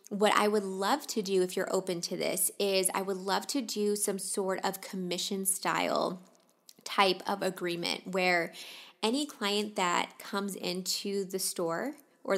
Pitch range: 185-215 Hz